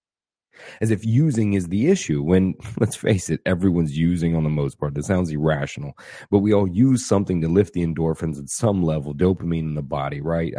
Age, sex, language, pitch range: 30-49, male, English, 85-105 Hz